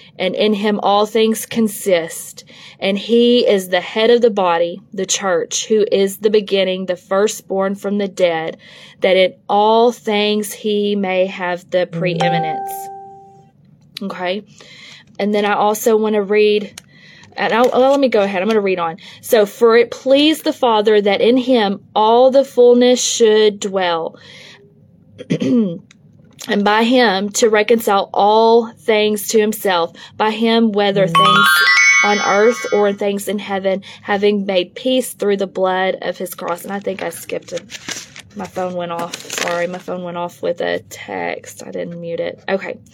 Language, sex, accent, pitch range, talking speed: English, female, American, 185-230 Hz, 165 wpm